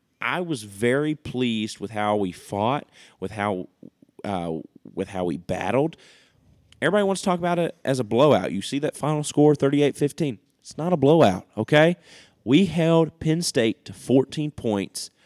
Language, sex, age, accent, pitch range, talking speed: English, male, 30-49, American, 105-150 Hz, 165 wpm